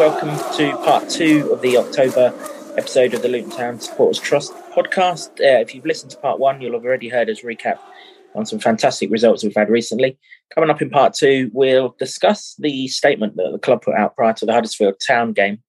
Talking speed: 210 wpm